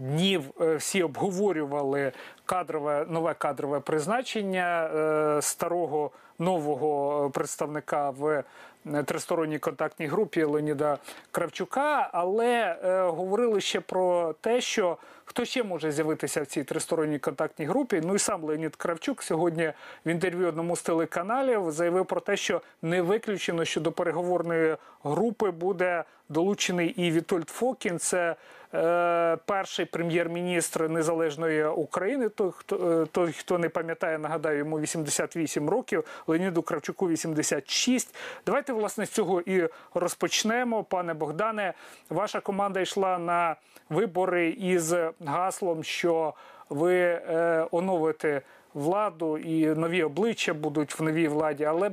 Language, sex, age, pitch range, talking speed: Ukrainian, male, 40-59, 155-190 Hz, 120 wpm